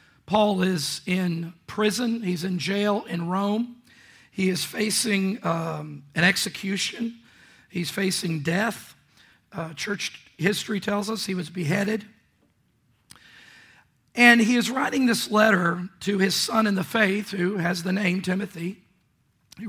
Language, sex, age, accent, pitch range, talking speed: English, male, 50-69, American, 180-210 Hz, 135 wpm